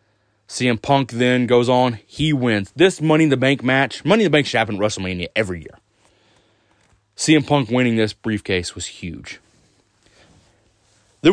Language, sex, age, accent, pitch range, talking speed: English, male, 20-39, American, 105-145 Hz, 165 wpm